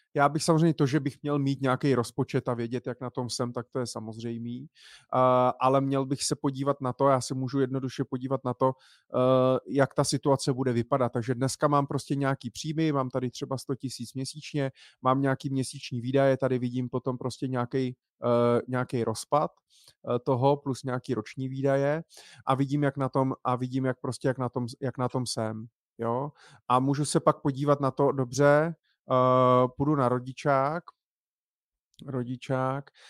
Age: 30-49